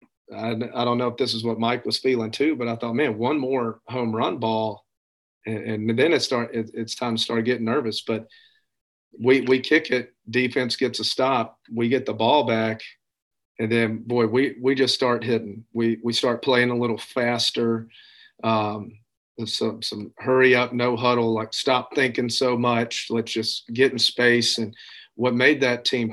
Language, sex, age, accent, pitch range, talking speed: English, male, 40-59, American, 115-130 Hz, 195 wpm